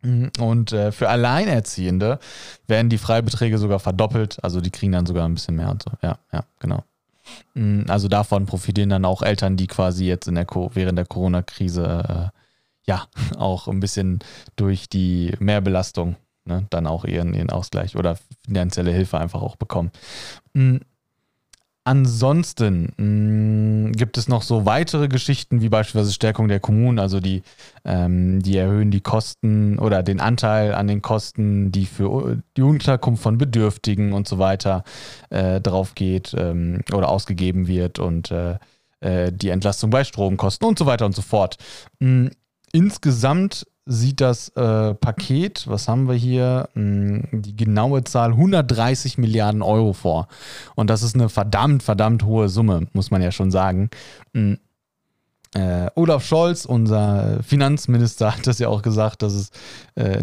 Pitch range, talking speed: 95-125 Hz, 150 wpm